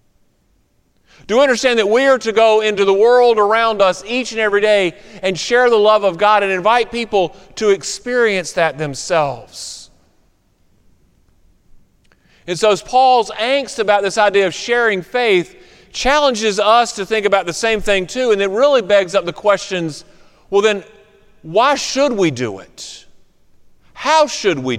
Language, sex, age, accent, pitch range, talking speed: English, male, 40-59, American, 185-235 Hz, 160 wpm